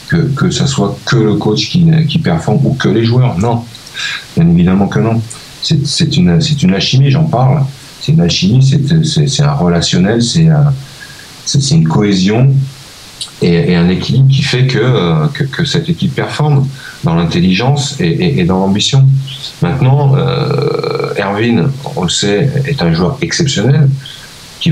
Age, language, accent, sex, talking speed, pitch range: 40-59, French, French, male, 170 wpm, 135-160 Hz